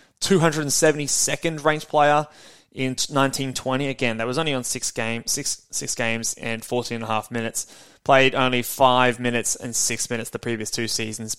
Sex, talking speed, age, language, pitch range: male, 170 wpm, 20-39, English, 125-155 Hz